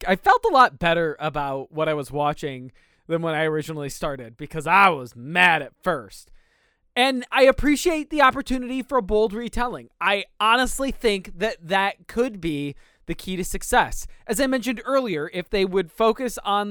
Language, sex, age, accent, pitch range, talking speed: English, male, 20-39, American, 175-235 Hz, 180 wpm